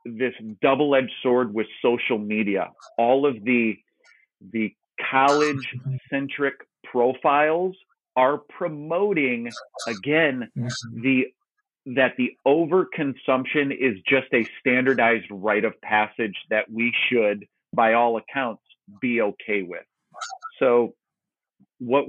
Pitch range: 120-140 Hz